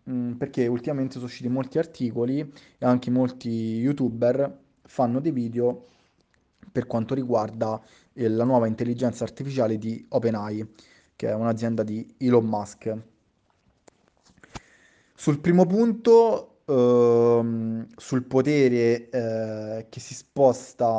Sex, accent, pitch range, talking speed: male, native, 115-135 Hz, 110 wpm